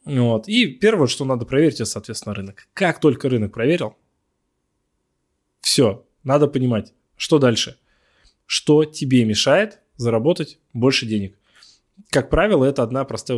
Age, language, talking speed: 20-39, Russian, 130 wpm